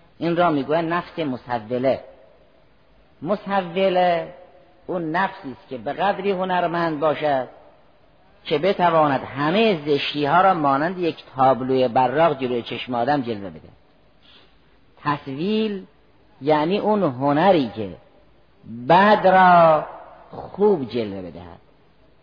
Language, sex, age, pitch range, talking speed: Persian, female, 50-69, 135-175 Hz, 100 wpm